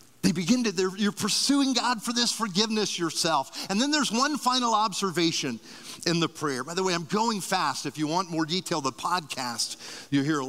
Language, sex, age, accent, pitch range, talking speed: English, male, 50-69, American, 145-210 Hz, 185 wpm